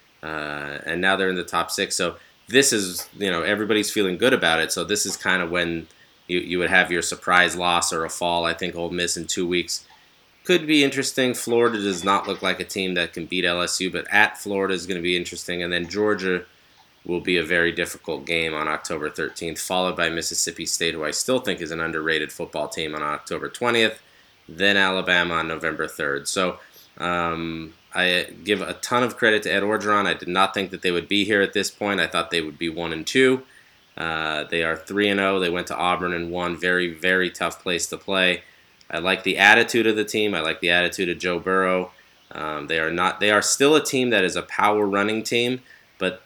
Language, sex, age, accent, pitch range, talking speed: English, male, 20-39, American, 85-100 Hz, 225 wpm